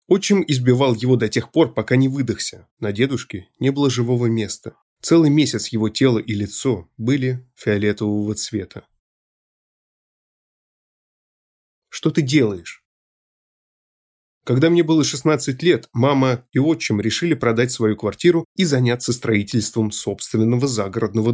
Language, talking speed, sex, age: Russian, 125 wpm, male, 20-39